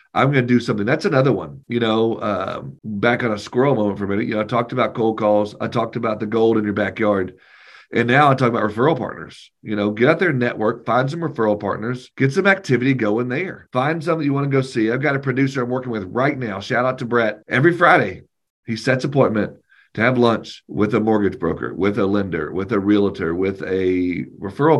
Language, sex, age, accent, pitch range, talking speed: English, male, 40-59, American, 100-125 Hz, 235 wpm